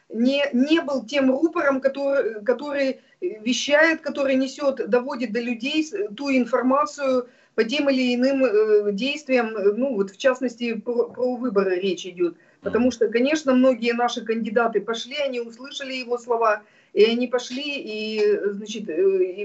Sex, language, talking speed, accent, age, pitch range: female, Russian, 135 wpm, native, 40-59, 225-280 Hz